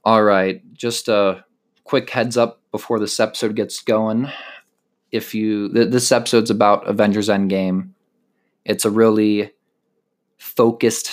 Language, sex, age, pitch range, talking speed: English, male, 20-39, 95-115 Hz, 130 wpm